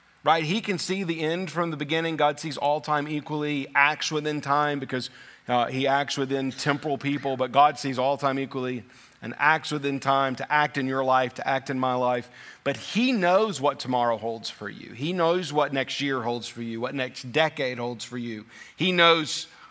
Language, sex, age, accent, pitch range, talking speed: English, male, 40-59, American, 135-170 Hz, 205 wpm